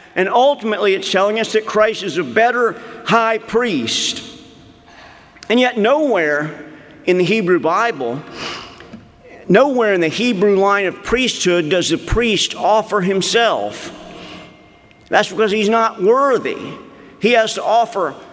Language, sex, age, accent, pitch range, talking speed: English, male, 50-69, American, 155-220 Hz, 130 wpm